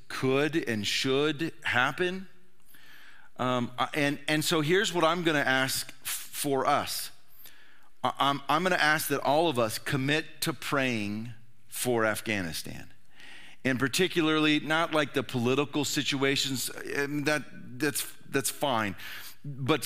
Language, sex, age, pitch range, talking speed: English, male, 40-59, 115-150 Hz, 120 wpm